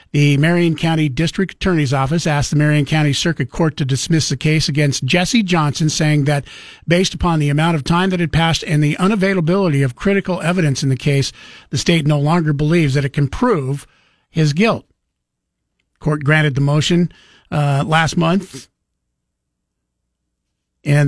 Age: 50-69